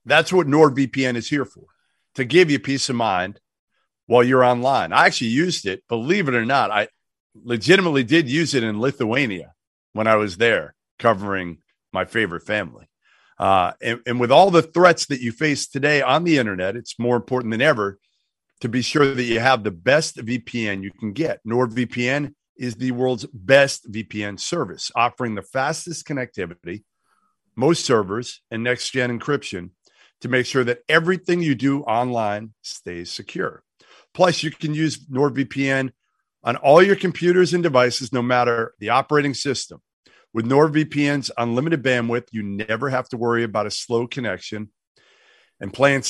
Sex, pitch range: male, 115-140 Hz